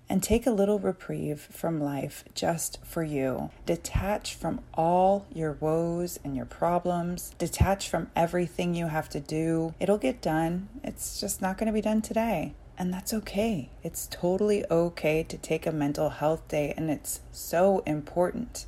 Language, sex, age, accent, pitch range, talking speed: English, female, 30-49, American, 155-185 Hz, 165 wpm